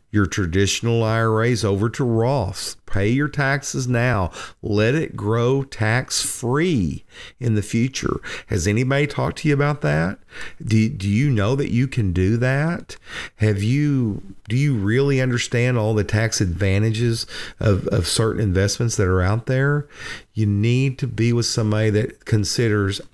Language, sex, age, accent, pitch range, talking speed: English, male, 50-69, American, 105-130 Hz, 155 wpm